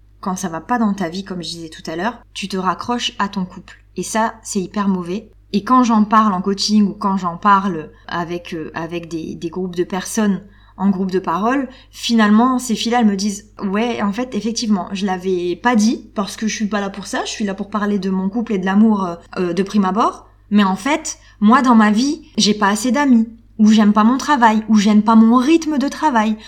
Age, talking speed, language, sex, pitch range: 20-39, 240 wpm, French, female, 190-240 Hz